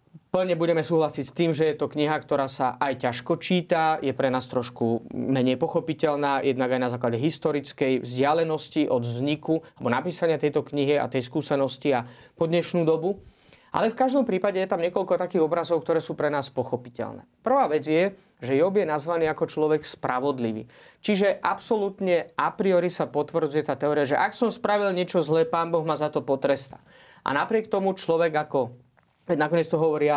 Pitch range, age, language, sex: 140-180 Hz, 30-49, Slovak, male